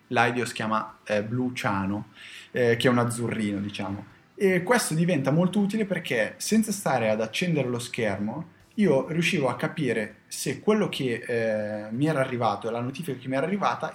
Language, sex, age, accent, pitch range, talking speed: Italian, male, 10-29, native, 110-135 Hz, 170 wpm